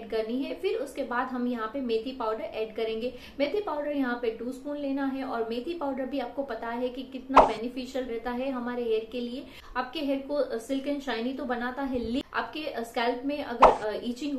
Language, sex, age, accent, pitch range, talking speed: Hindi, female, 30-49, native, 235-280 Hz, 200 wpm